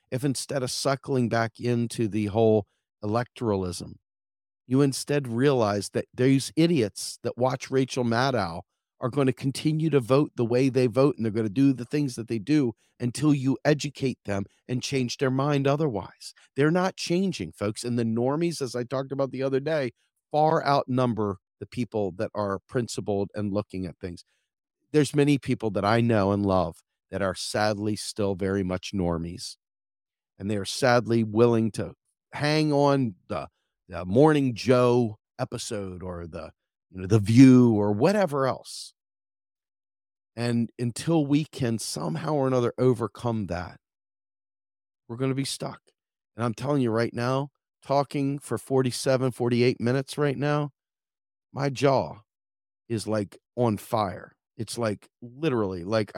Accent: American